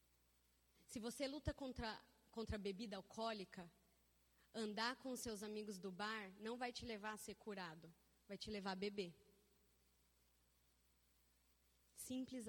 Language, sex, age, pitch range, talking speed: Portuguese, female, 20-39, 175-240 Hz, 130 wpm